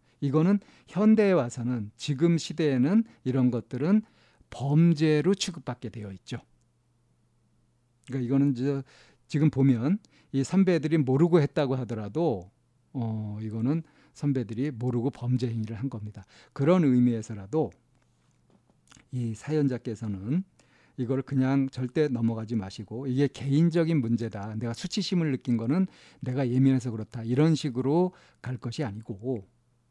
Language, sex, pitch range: Korean, male, 120-155 Hz